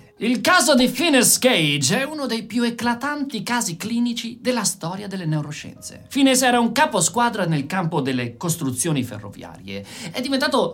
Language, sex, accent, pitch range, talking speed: Italian, male, native, 165-250 Hz, 150 wpm